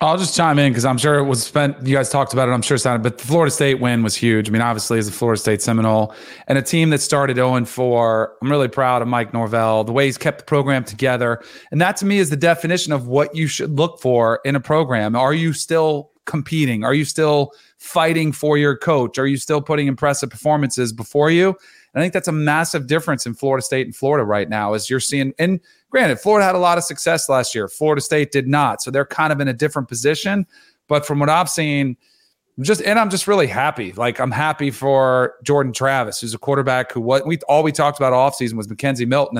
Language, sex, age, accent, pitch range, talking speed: English, male, 30-49, American, 125-150 Hz, 245 wpm